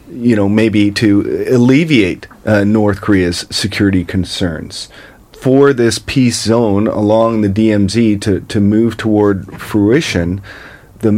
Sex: male